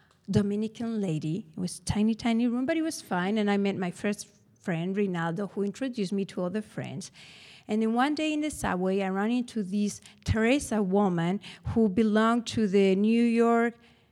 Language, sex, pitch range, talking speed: English, female, 200-255 Hz, 185 wpm